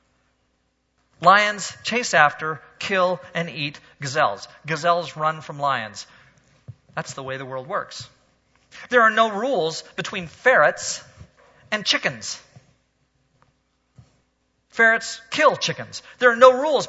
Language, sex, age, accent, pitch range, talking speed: English, male, 40-59, American, 170-255 Hz, 115 wpm